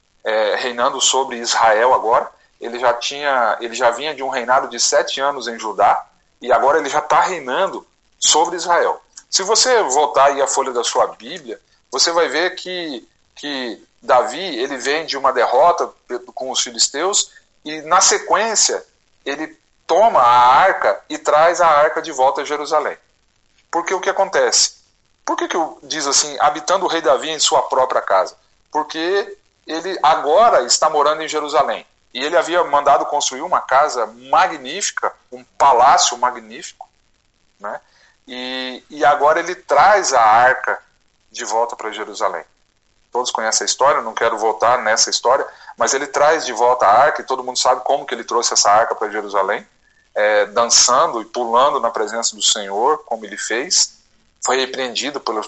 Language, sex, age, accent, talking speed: Portuguese, male, 40-59, Brazilian, 170 wpm